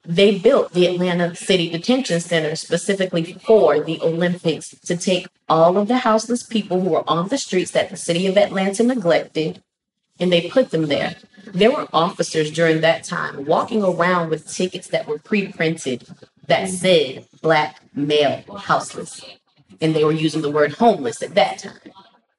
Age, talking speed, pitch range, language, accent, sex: 30-49, 165 wpm, 165-215 Hz, English, American, female